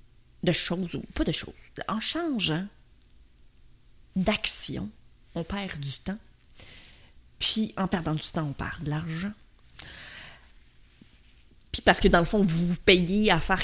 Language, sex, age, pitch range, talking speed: French, female, 30-49, 155-200 Hz, 145 wpm